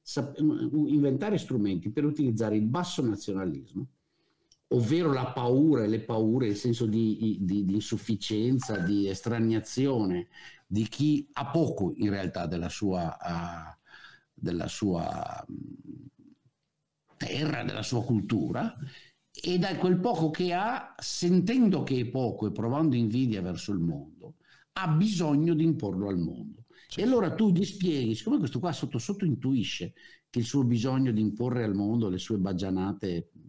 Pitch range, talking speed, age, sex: 100-145 Hz, 140 wpm, 50-69, male